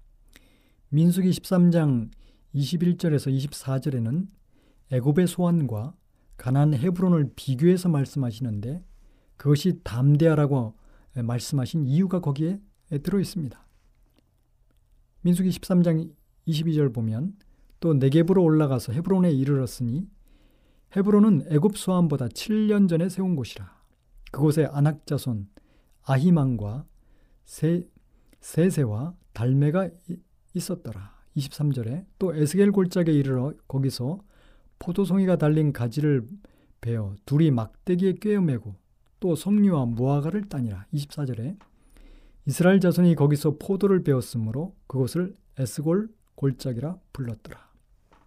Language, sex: Korean, male